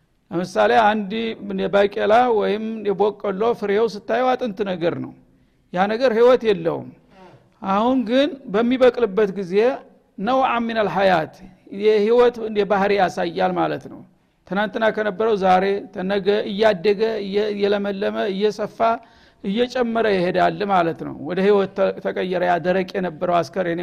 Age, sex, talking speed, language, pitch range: 60-79, male, 105 wpm, Amharic, 195-230 Hz